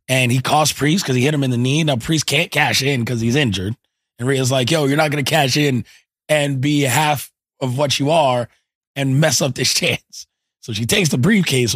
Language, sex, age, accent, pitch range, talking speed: English, male, 20-39, American, 115-145 Hz, 235 wpm